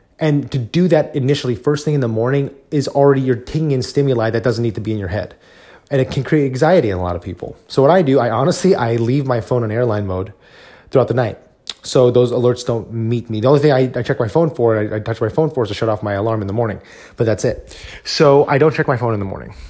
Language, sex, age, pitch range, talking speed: English, male, 30-49, 110-130 Hz, 275 wpm